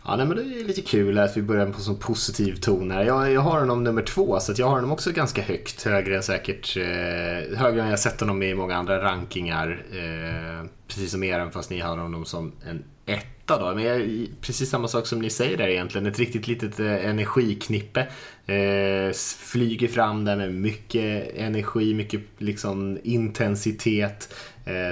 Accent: Norwegian